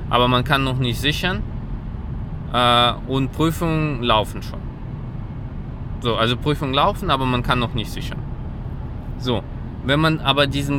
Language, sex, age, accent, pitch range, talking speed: German, male, 20-39, German, 120-150 Hz, 140 wpm